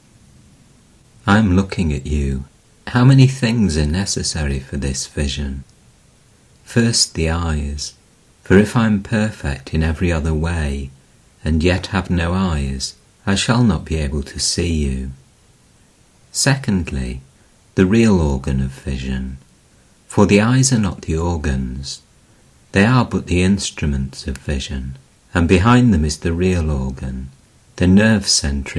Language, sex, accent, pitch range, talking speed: English, male, British, 70-100 Hz, 140 wpm